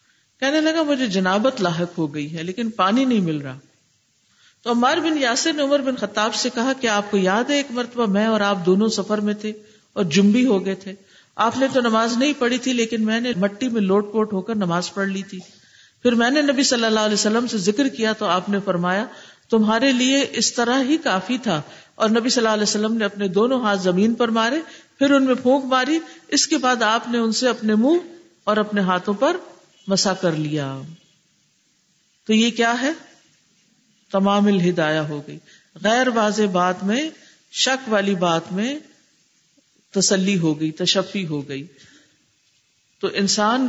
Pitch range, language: 190-245 Hz, English